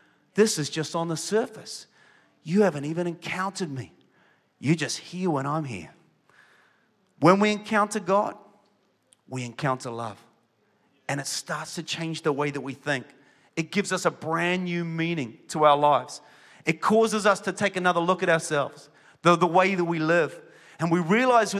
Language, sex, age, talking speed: English, male, 30-49, 170 wpm